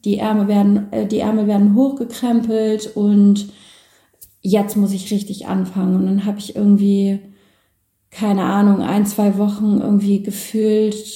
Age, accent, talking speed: 30-49, German, 135 wpm